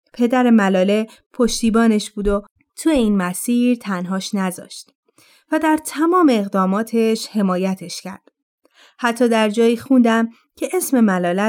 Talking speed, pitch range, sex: 120 wpm, 195-255 Hz, female